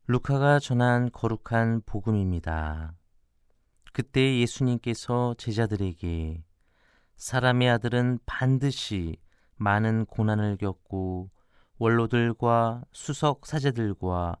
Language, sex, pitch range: Korean, male, 95-125 Hz